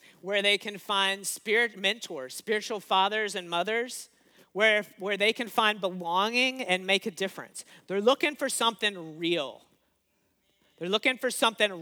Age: 40-59